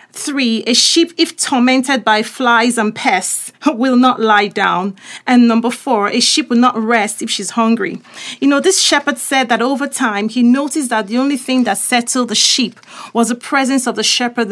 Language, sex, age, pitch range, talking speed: English, female, 30-49, 230-270 Hz, 200 wpm